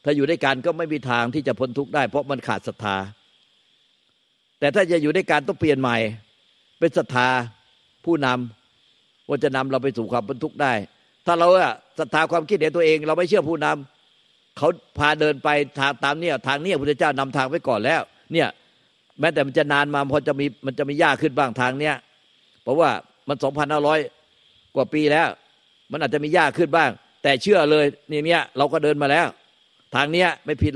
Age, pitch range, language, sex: 50-69, 130-155 Hz, Thai, male